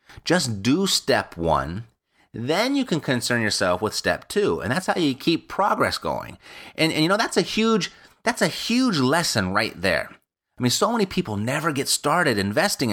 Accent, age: American, 30-49